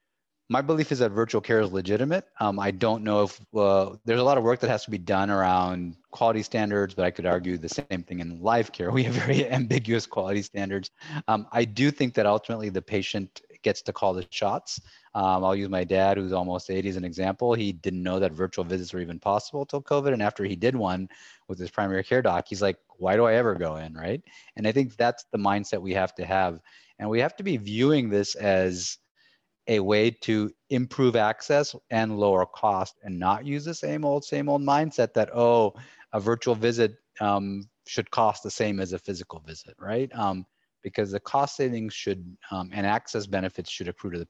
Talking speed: 220 wpm